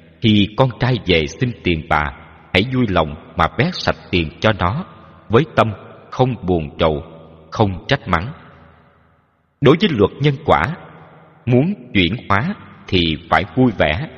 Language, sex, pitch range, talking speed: Vietnamese, male, 80-125 Hz, 150 wpm